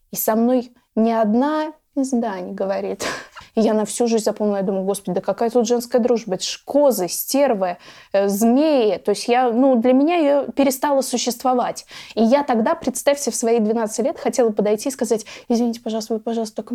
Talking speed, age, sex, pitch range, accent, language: 195 wpm, 20-39, female, 215-255 Hz, native, Russian